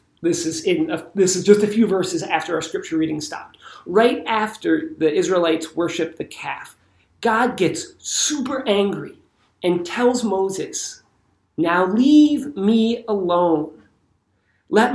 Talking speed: 135 wpm